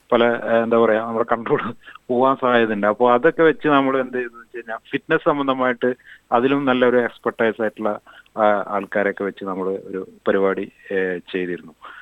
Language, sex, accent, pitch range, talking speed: Malayalam, male, native, 105-125 Hz, 125 wpm